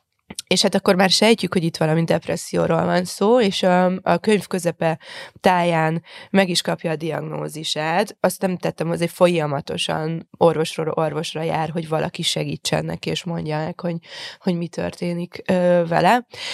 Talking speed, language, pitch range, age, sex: 150 wpm, Hungarian, 160-195 Hz, 20-39, female